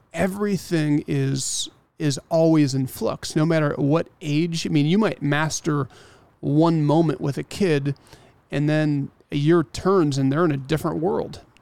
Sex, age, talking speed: male, 40-59, 160 wpm